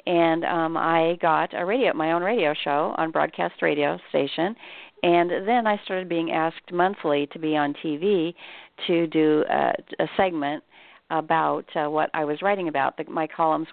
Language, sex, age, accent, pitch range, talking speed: English, female, 50-69, American, 155-180 Hz, 175 wpm